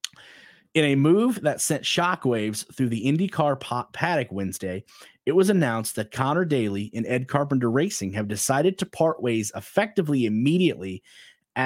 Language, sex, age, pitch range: English, male, 30-49, 110-150 Hz